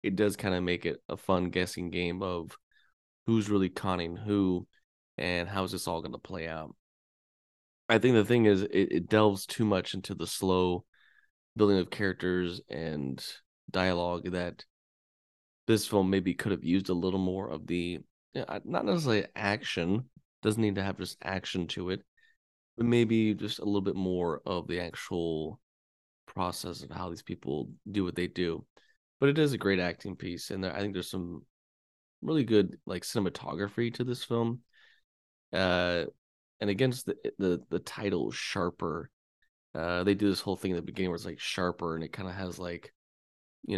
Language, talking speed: English, 180 wpm